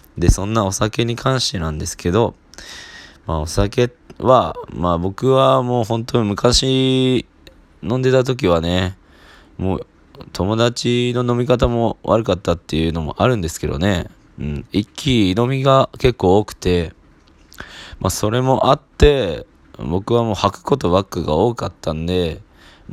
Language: Japanese